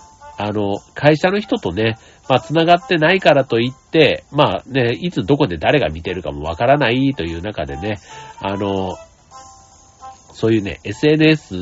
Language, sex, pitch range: Japanese, male, 100-155 Hz